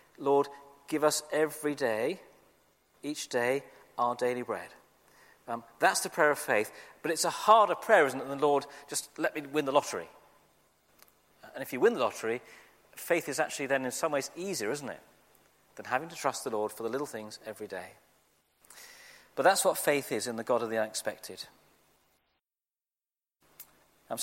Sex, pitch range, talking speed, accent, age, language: male, 135-190 Hz, 180 wpm, British, 40-59, English